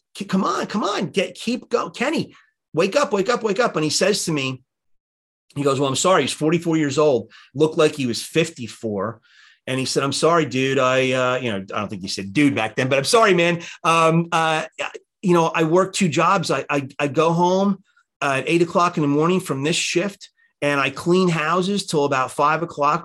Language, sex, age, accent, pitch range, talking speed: English, male, 30-49, American, 115-165 Hz, 220 wpm